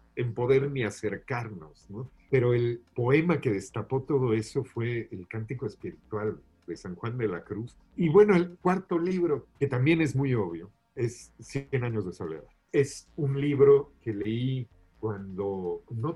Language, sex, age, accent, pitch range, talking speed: Spanish, male, 50-69, Mexican, 105-140 Hz, 165 wpm